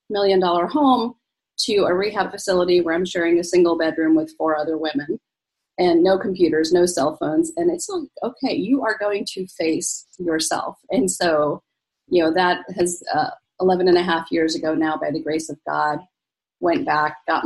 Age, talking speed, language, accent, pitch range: 30-49, 190 wpm, English, American, 170-265 Hz